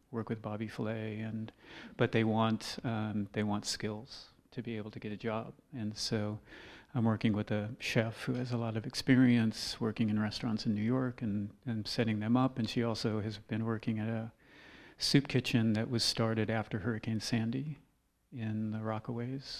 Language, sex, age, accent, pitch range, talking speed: English, male, 40-59, American, 110-120 Hz, 190 wpm